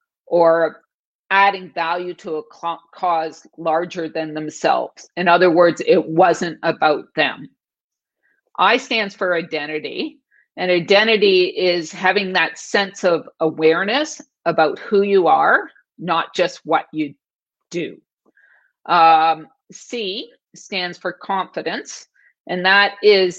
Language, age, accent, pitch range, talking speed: English, 50-69, American, 165-205 Hz, 115 wpm